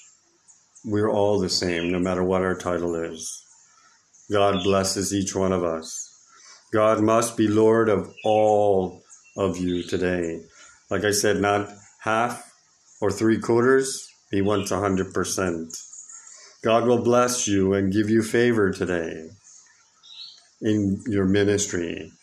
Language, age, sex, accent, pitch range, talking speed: English, 50-69, male, American, 95-110 Hz, 130 wpm